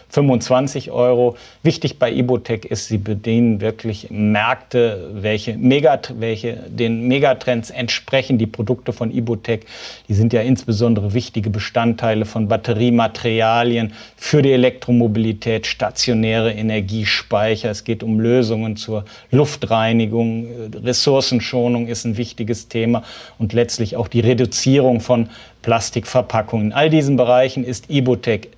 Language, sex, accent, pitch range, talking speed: German, male, German, 110-125 Hz, 120 wpm